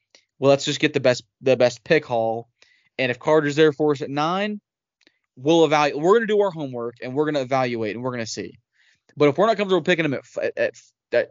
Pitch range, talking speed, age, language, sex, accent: 120-160 Hz, 250 wpm, 20-39, English, male, American